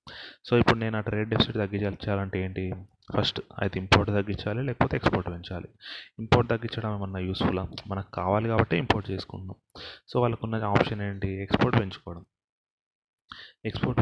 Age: 30-49